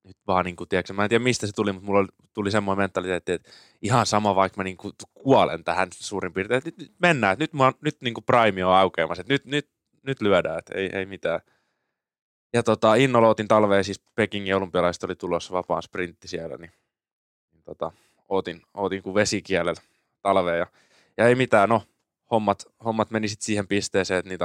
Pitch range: 90-110 Hz